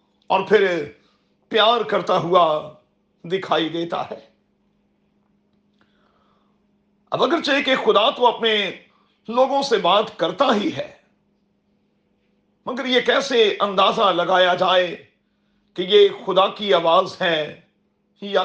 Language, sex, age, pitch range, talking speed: Urdu, male, 50-69, 185-220 Hz, 105 wpm